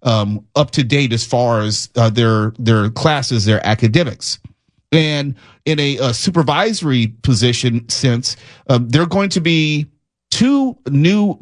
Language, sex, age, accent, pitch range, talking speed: English, male, 40-59, American, 110-145 Hz, 140 wpm